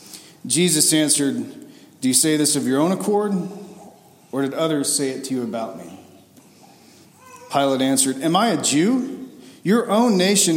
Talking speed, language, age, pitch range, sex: 160 wpm, English, 40-59, 130-165 Hz, male